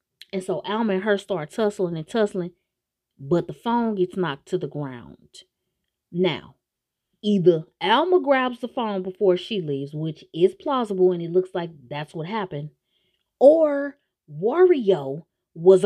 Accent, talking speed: American, 150 wpm